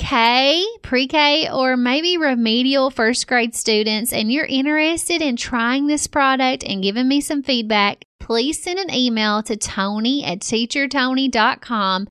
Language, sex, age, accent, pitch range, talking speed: English, female, 30-49, American, 215-280 Hz, 135 wpm